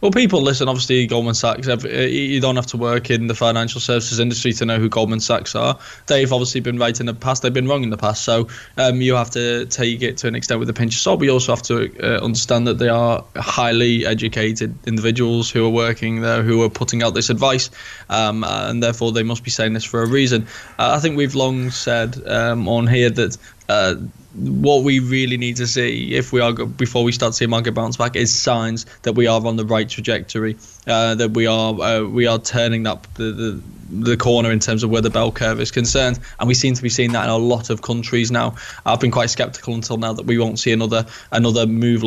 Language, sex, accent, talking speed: English, male, British, 235 wpm